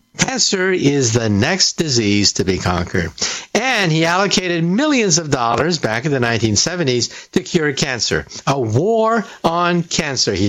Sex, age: male, 50-69